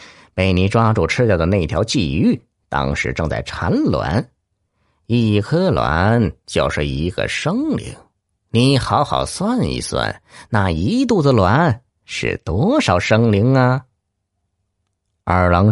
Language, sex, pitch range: Chinese, male, 95-140 Hz